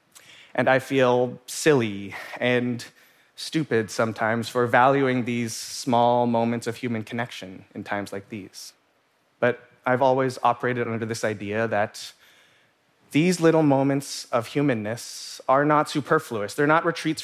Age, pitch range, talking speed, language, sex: 20-39, 115-145 Hz, 130 wpm, English, male